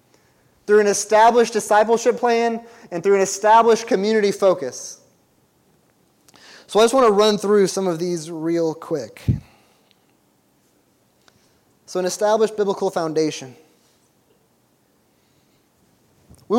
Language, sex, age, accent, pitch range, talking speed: English, male, 20-39, American, 195-235 Hz, 105 wpm